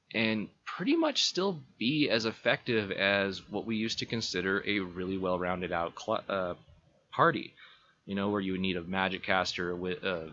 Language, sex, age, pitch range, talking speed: English, male, 20-39, 90-115 Hz, 155 wpm